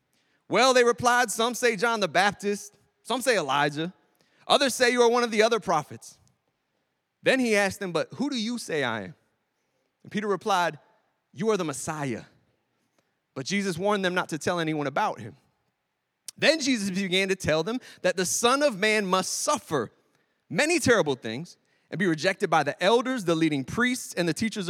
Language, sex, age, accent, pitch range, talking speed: English, male, 30-49, American, 175-235 Hz, 185 wpm